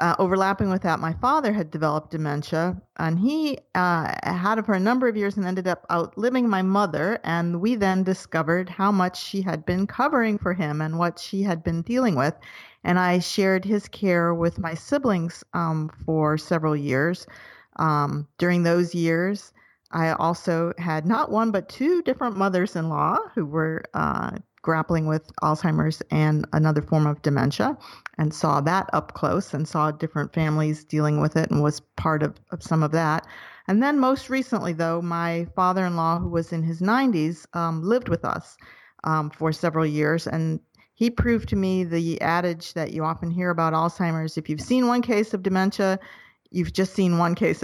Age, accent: 50-69, American